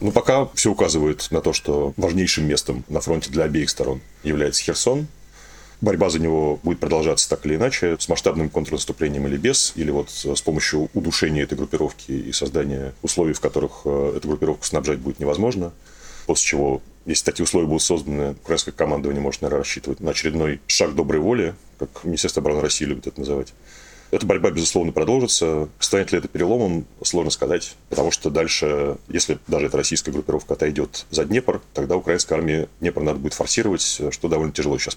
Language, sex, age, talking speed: Russian, male, 30-49, 175 wpm